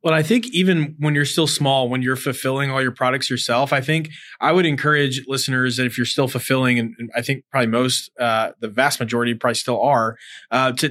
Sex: male